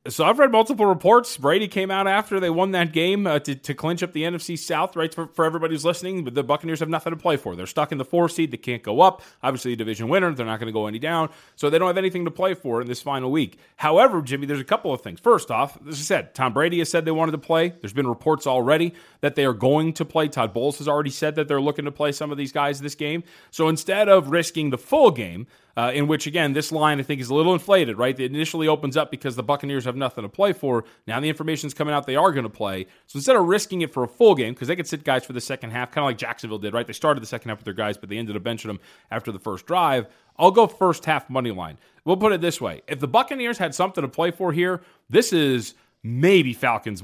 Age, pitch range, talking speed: 30-49, 130-170 Hz, 285 wpm